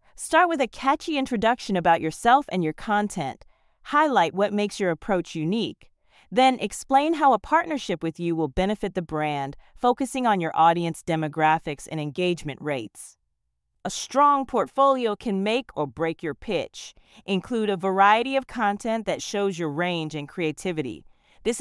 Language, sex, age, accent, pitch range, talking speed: English, female, 40-59, American, 160-250 Hz, 155 wpm